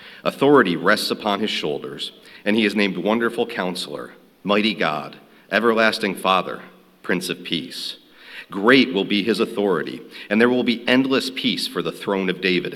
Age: 50-69